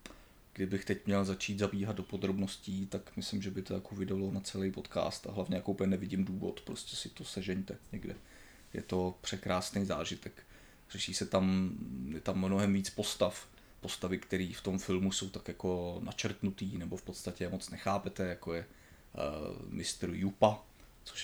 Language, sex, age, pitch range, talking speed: Czech, male, 20-39, 95-100 Hz, 170 wpm